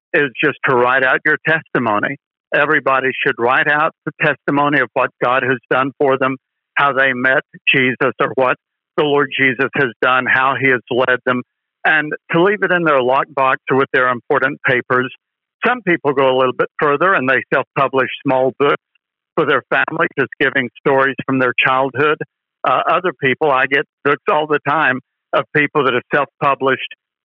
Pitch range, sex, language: 130-165 Hz, male, English